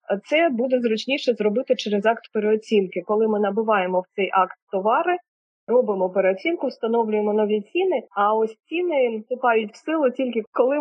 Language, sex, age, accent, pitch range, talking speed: Ukrainian, female, 20-39, native, 200-250 Hz, 150 wpm